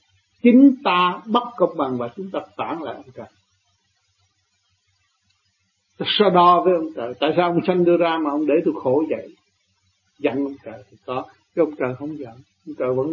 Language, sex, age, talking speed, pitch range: Vietnamese, male, 60-79, 190 wpm, 100-150 Hz